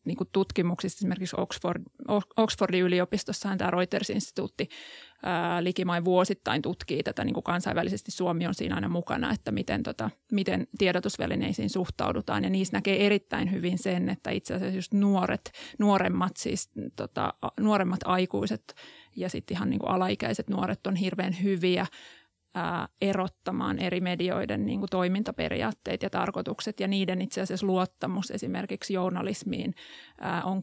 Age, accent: 30-49, native